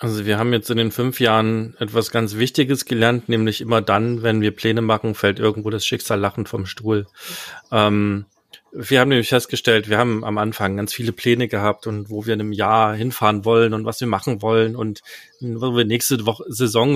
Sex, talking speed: male, 200 wpm